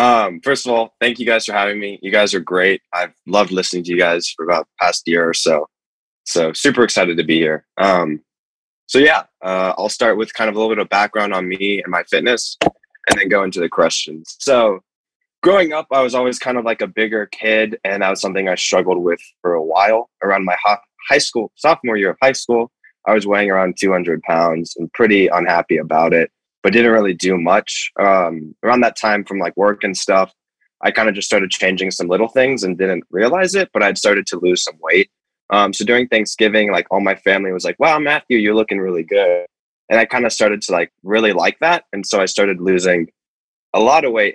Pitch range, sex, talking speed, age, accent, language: 90-115 Hz, male, 230 wpm, 20-39, American, English